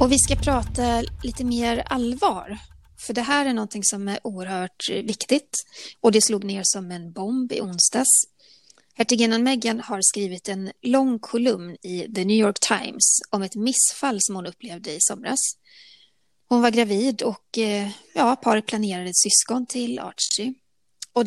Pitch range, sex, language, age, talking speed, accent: 195-245 Hz, female, Swedish, 30-49, 160 wpm, native